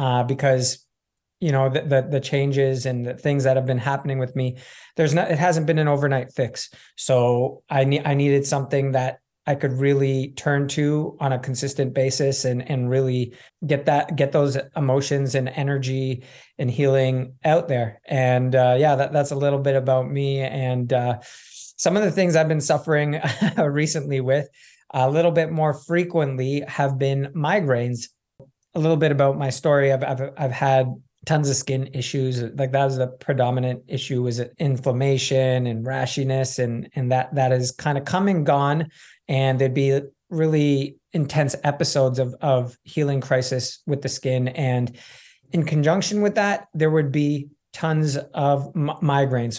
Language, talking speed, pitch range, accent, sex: English, 175 wpm, 130-150 Hz, American, male